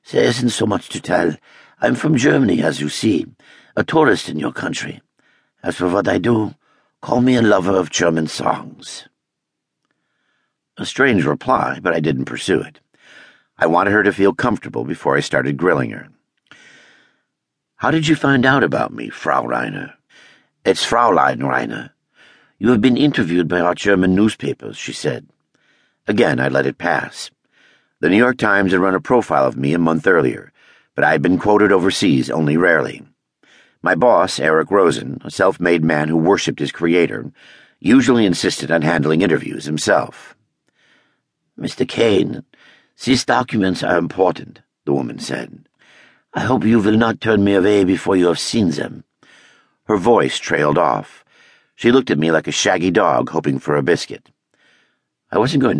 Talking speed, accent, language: 165 wpm, American, English